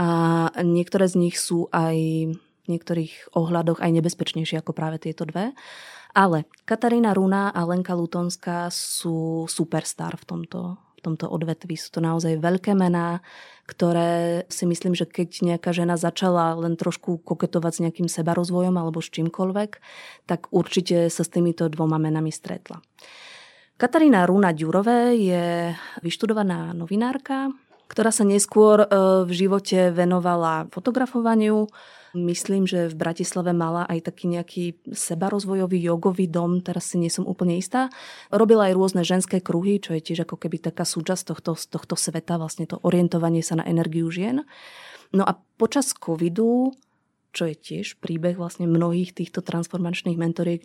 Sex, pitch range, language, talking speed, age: female, 170-190 Hz, Slovak, 145 wpm, 20-39